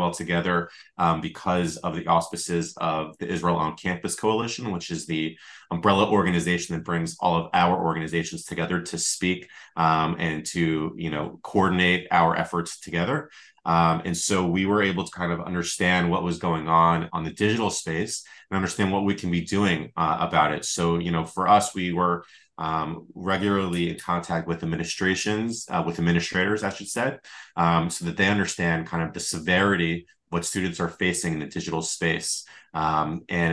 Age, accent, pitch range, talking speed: 30-49, American, 80-90 Hz, 185 wpm